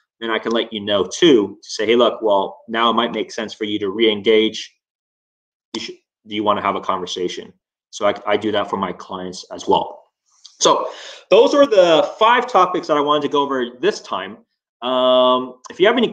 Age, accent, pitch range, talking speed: 20-39, American, 115-175 Hz, 210 wpm